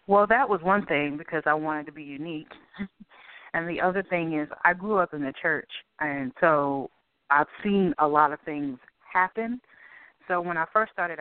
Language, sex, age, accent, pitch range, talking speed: English, female, 30-49, American, 145-185 Hz, 195 wpm